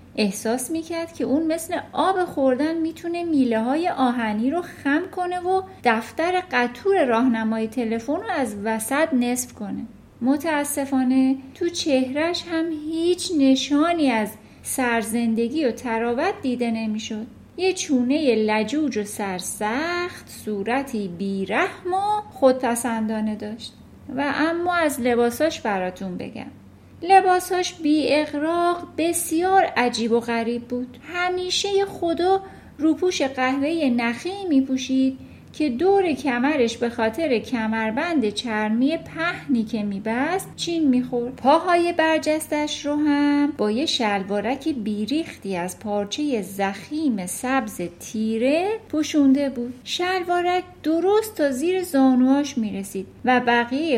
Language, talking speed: Persian, 115 wpm